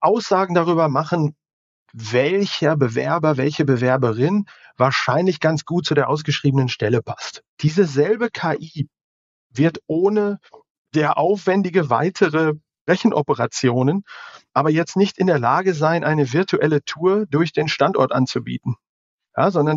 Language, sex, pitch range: German, male, 140-185 Hz